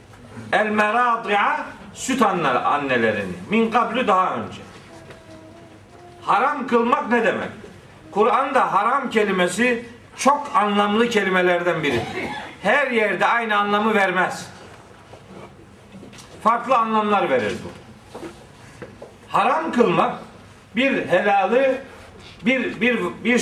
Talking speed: 85 wpm